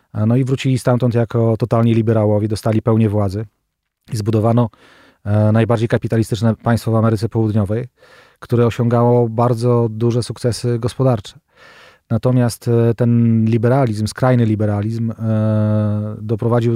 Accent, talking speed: native, 105 wpm